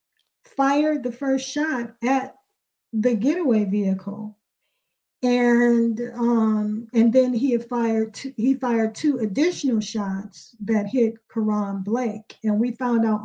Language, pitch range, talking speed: English, 215-245 Hz, 130 wpm